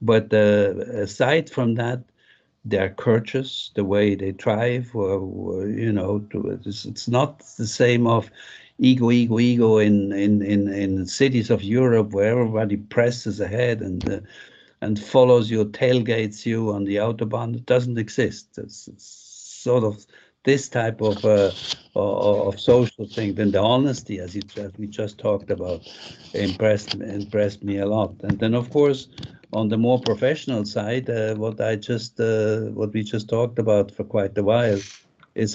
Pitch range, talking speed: 105-120 Hz, 165 wpm